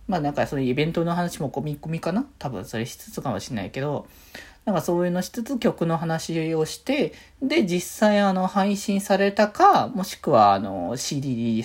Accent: native